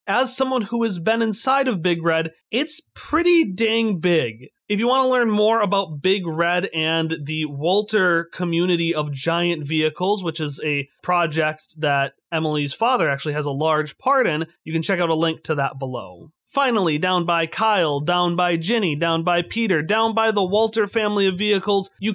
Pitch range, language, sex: 155-210 Hz, English, male